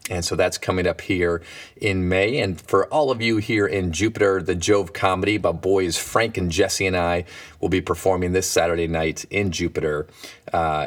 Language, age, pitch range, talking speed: English, 30-49, 90-110 Hz, 195 wpm